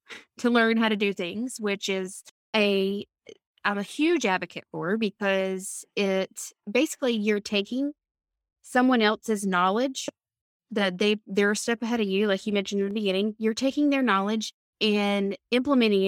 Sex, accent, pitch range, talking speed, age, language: female, American, 195-240 Hz, 155 wpm, 20-39, English